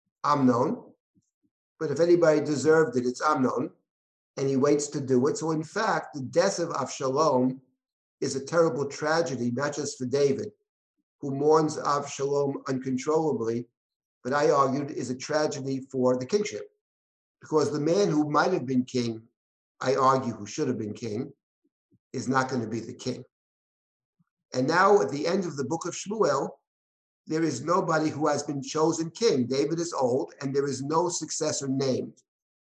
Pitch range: 130-155 Hz